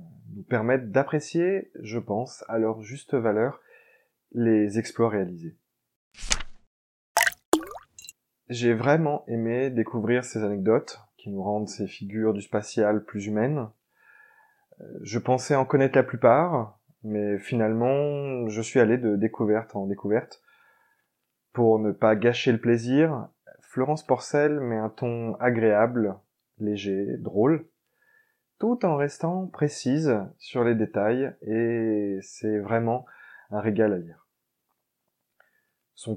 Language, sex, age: French, male, 20-39